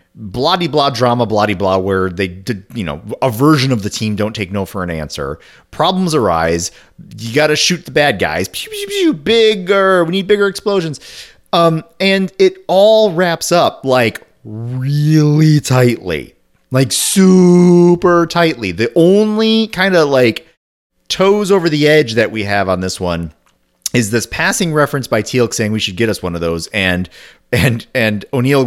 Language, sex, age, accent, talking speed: English, male, 30-49, American, 175 wpm